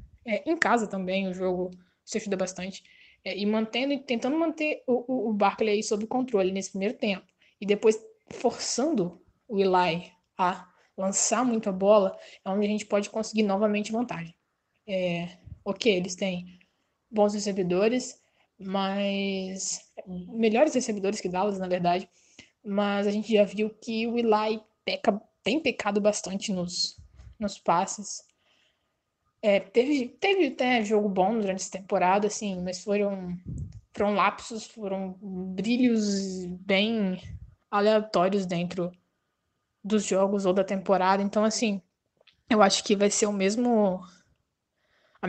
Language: Portuguese